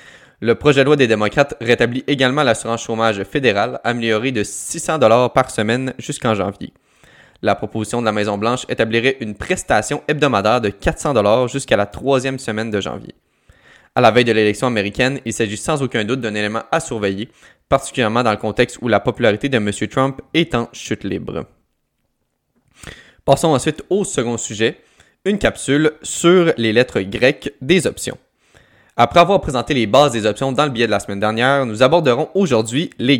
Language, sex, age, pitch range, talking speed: French, male, 20-39, 110-140 Hz, 175 wpm